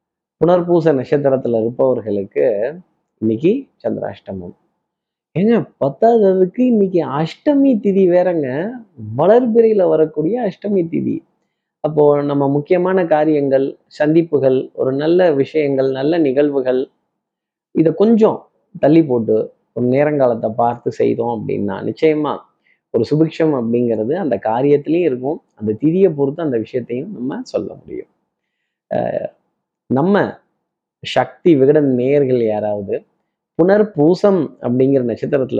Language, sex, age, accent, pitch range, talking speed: Tamil, male, 30-49, native, 130-195 Hz, 100 wpm